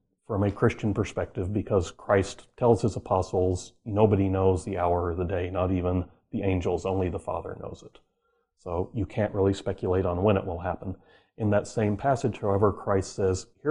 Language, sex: English, male